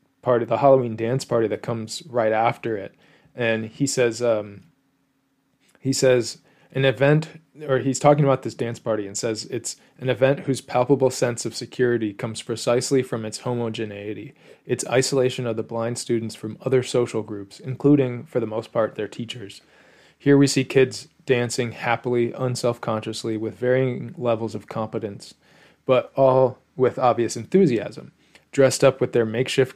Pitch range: 110-130 Hz